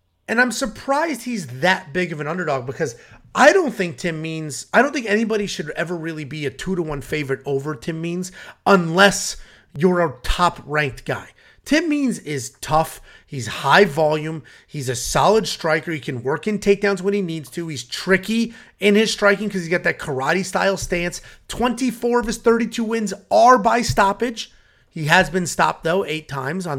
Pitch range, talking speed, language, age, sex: 155-215 Hz, 180 wpm, English, 30-49, male